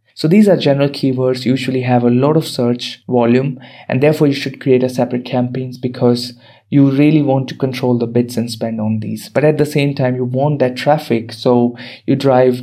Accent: Indian